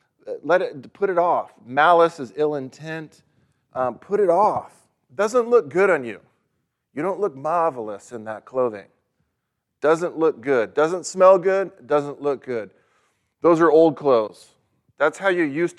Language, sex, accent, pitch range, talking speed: English, male, American, 120-150 Hz, 165 wpm